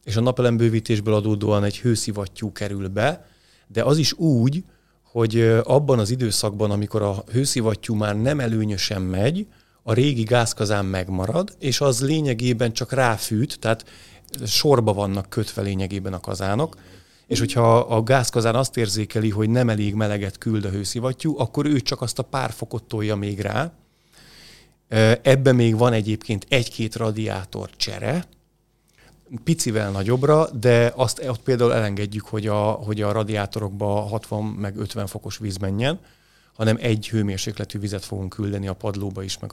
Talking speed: 145 wpm